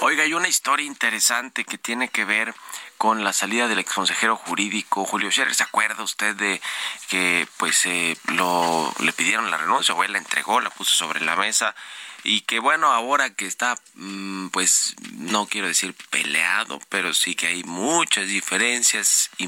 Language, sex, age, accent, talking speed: Spanish, male, 30-49, Mexican, 175 wpm